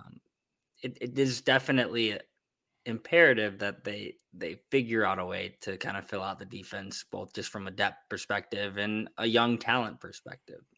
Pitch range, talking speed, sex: 100-120 Hz, 160 wpm, male